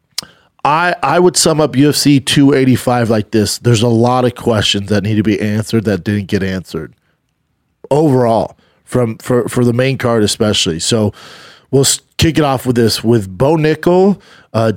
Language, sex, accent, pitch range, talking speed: English, male, American, 105-135 Hz, 170 wpm